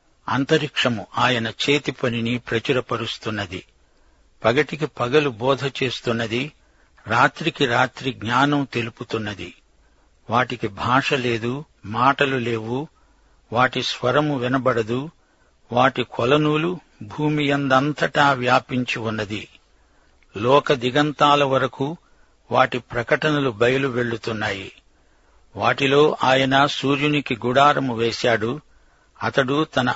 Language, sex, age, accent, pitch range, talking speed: Telugu, male, 60-79, native, 120-145 Hz, 80 wpm